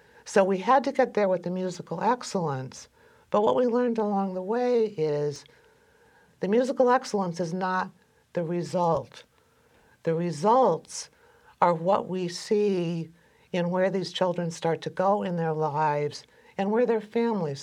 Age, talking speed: 60-79, 155 wpm